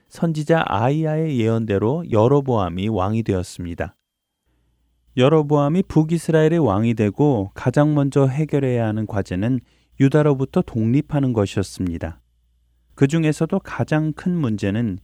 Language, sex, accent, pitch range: Korean, male, native, 95-150 Hz